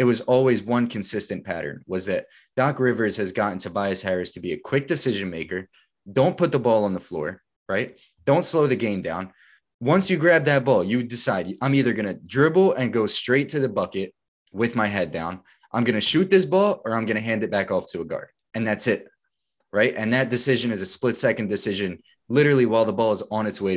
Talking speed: 230 wpm